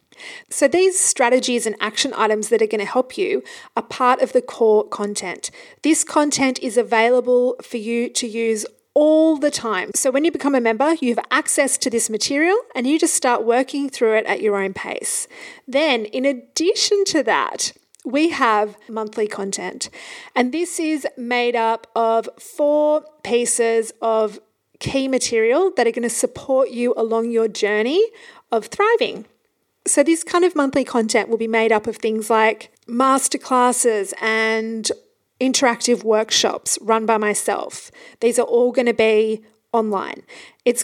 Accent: Australian